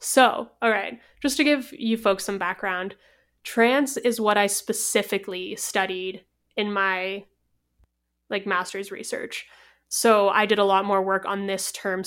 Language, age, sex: English, 20-39, female